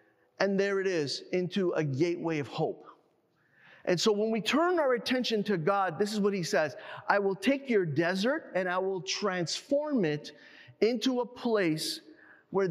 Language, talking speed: English, 175 wpm